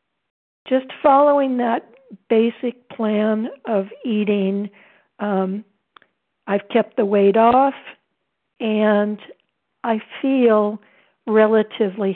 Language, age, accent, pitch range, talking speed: English, 60-79, American, 200-255 Hz, 85 wpm